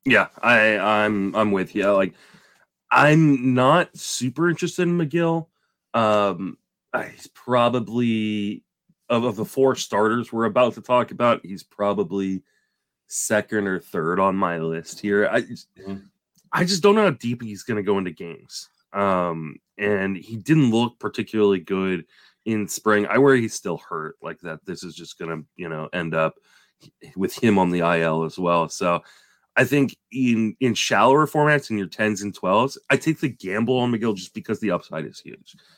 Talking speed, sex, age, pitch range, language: 175 wpm, male, 30-49, 90-120 Hz, English